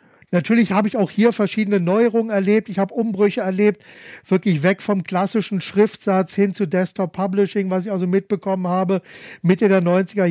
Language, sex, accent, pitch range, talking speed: German, male, German, 170-195 Hz, 165 wpm